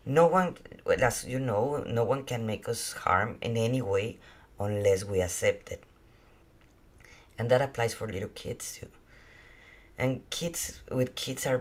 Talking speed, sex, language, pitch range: 155 wpm, female, English, 115-135 Hz